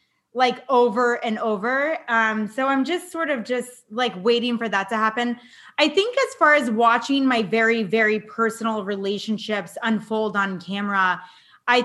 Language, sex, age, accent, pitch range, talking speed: English, female, 20-39, American, 225-275 Hz, 160 wpm